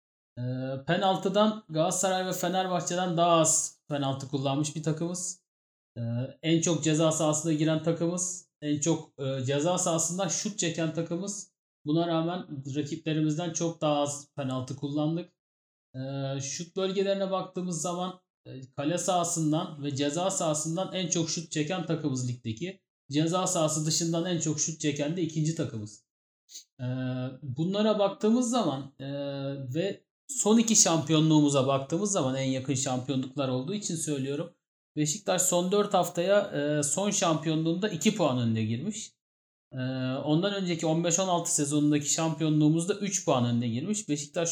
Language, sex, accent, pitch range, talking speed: Turkish, male, native, 145-180 Hz, 125 wpm